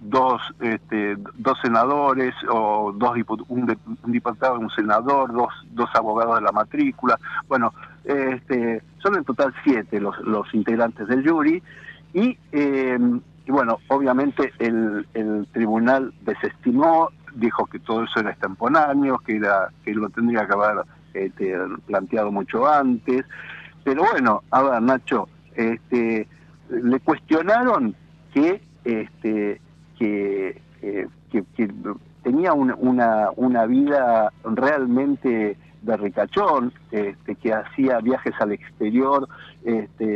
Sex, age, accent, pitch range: male, 50-69, Argentinian, 110-145 Hz